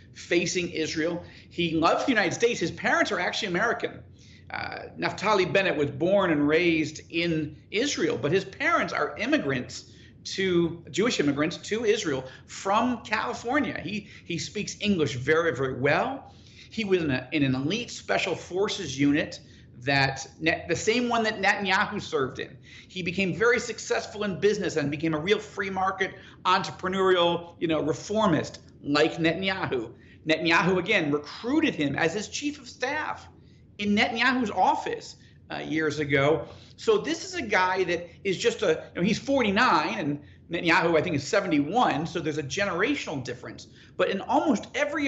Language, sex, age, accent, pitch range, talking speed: English, male, 50-69, American, 150-210 Hz, 155 wpm